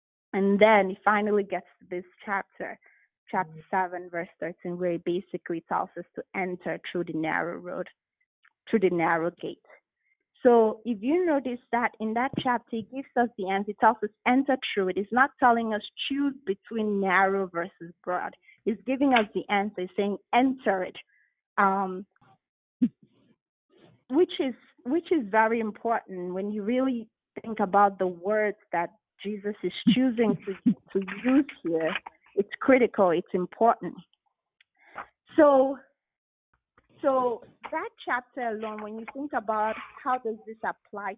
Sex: female